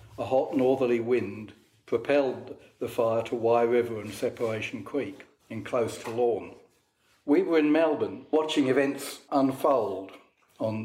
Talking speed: 140 wpm